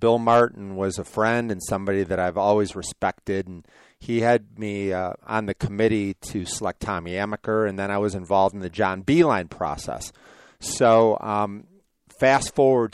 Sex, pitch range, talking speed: male, 95-115 Hz, 170 wpm